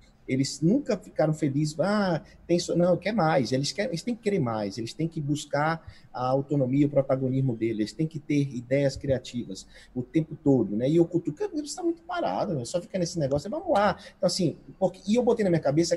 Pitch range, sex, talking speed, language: 125-175 Hz, male, 220 wpm, Portuguese